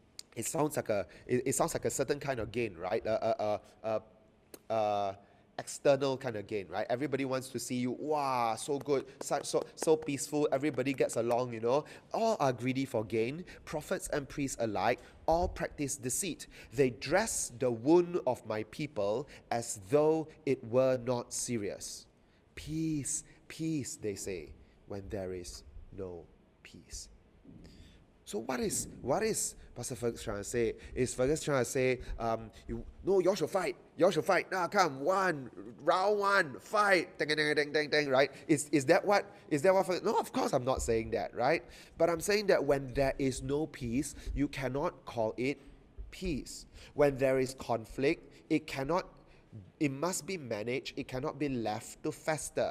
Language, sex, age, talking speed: English, male, 30-49, 180 wpm